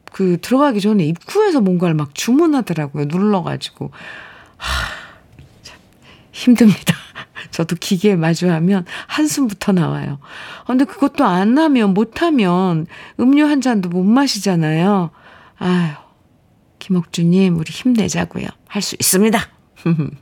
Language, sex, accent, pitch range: Korean, female, native, 170-245 Hz